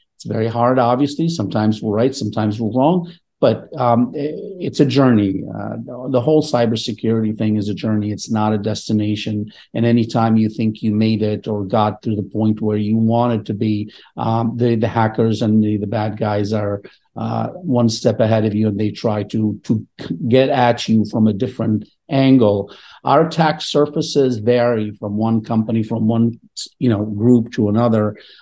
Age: 50-69